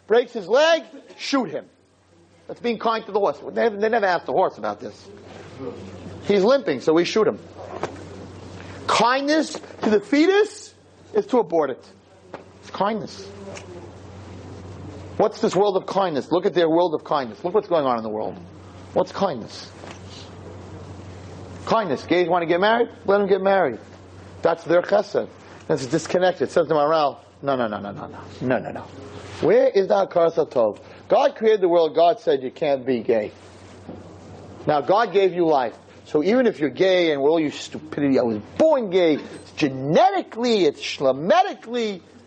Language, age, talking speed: English, 40-59, 170 wpm